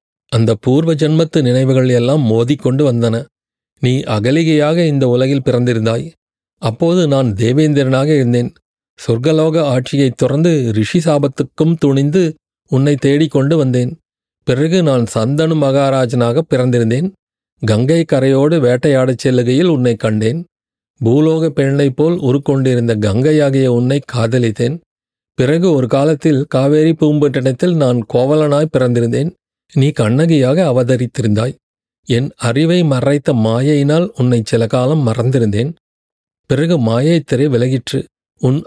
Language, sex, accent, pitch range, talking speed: Tamil, male, native, 125-155 Hz, 105 wpm